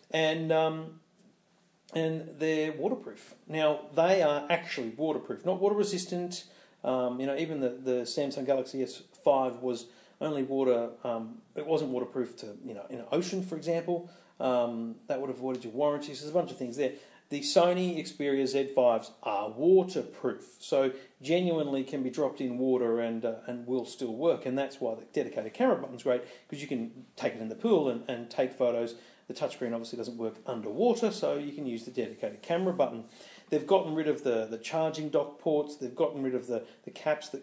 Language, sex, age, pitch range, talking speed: English, male, 40-59, 125-160 Hz, 190 wpm